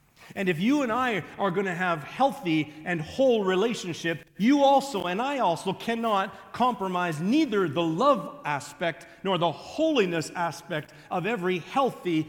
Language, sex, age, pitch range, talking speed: English, male, 50-69, 140-205 Hz, 150 wpm